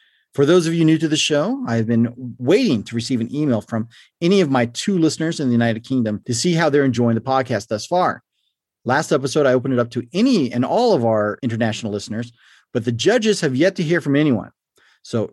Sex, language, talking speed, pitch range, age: male, English, 230 wpm, 120-170 Hz, 40-59